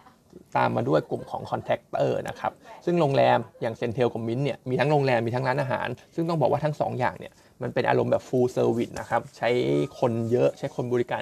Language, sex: Thai, male